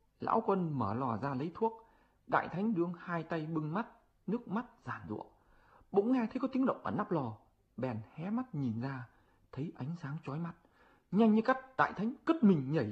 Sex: male